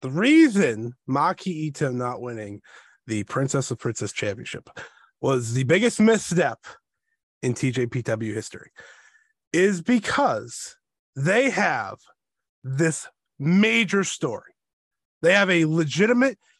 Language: English